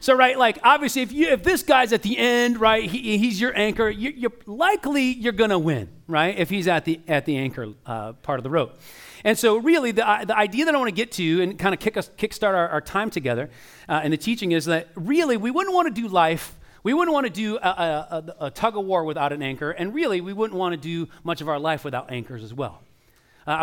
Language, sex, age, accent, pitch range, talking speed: English, male, 40-59, American, 145-220 Hz, 255 wpm